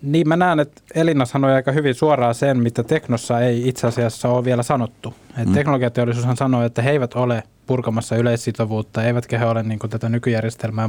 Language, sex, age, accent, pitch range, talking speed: Finnish, male, 20-39, native, 115-135 Hz, 180 wpm